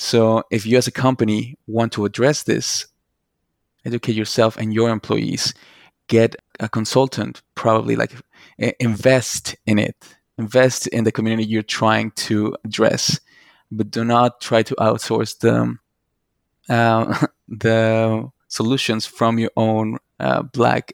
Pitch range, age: 110-125 Hz, 20-39